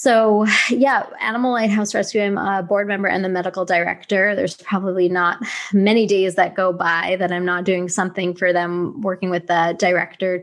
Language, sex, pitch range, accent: English, female, 180-205 Hz, American